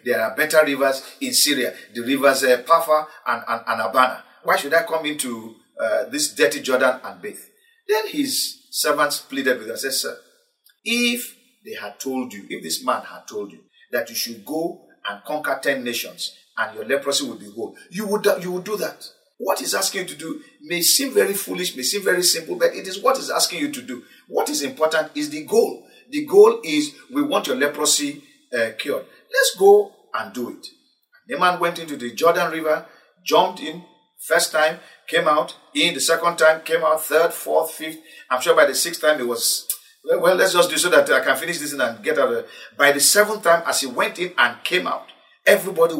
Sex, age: male, 50-69